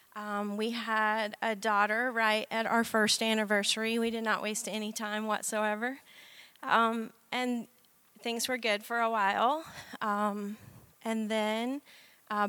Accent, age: American, 30-49